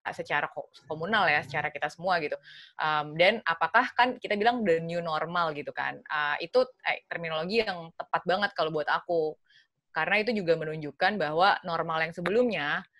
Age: 20-39